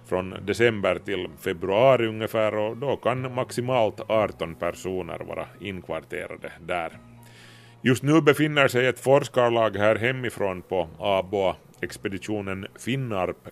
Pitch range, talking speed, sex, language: 100-125 Hz, 115 wpm, male, Swedish